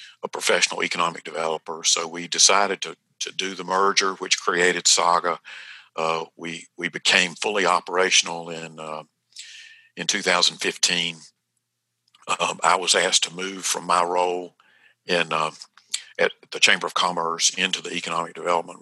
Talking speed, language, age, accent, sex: 145 wpm, English, 50-69, American, male